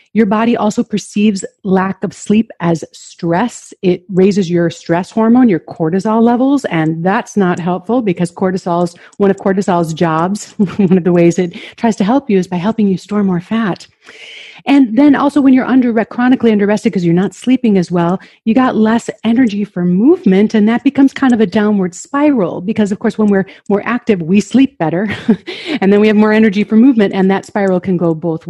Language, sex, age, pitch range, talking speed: English, female, 40-59, 180-235 Hz, 200 wpm